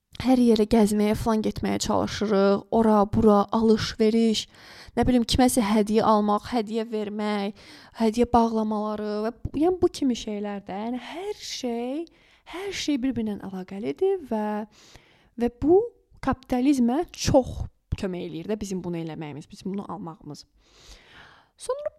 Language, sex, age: Turkish, female, 20-39